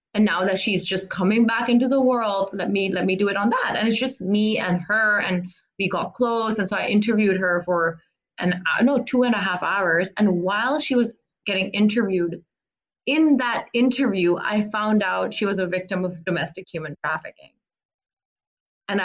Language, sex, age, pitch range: English, female, 20-39, 180-215 Hz